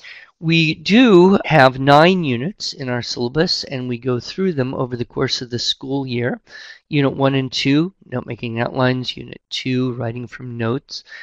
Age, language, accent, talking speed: 50-69, English, American, 170 wpm